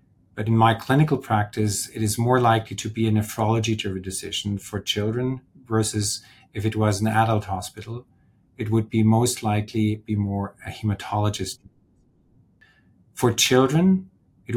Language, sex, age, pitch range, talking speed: English, male, 40-59, 100-115 Hz, 145 wpm